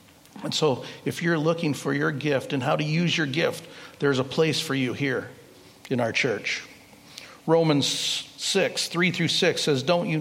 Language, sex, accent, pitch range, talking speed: English, male, American, 125-145 Hz, 180 wpm